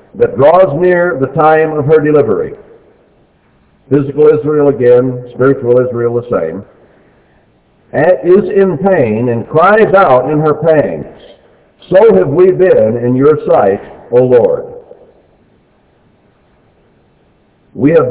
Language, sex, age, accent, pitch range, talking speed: English, male, 60-79, American, 115-180 Hz, 115 wpm